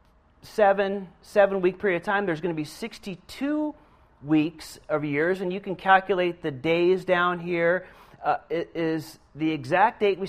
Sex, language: male, Finnish